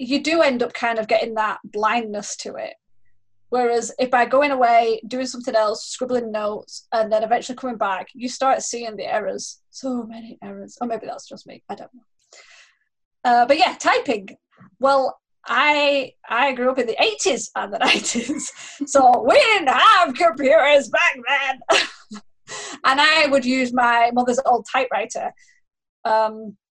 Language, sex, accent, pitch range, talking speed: English, female, British, 220-265 Hz, 165 wpm